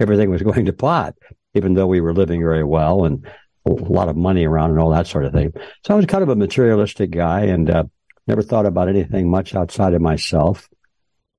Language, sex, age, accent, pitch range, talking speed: English, male, 60-79, American, 85-110 Hz, 220 wpm